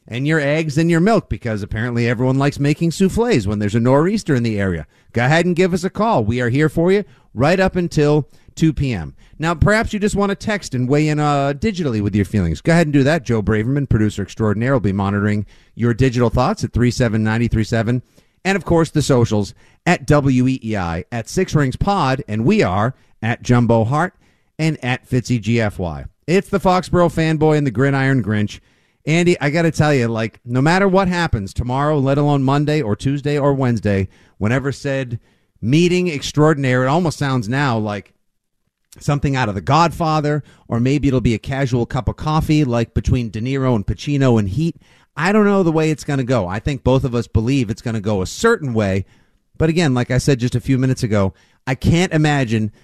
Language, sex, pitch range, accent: English, male, 110-150 Hz, American